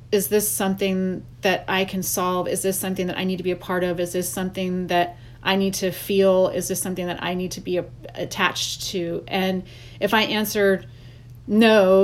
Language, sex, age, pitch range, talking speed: English, female, 30-49, 125-195 Hz, 205 wpm